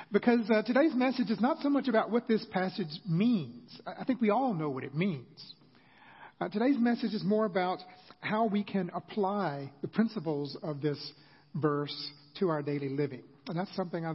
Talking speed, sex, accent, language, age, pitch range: 185 wpm, male, American, English, 50-69, 155-220 Hz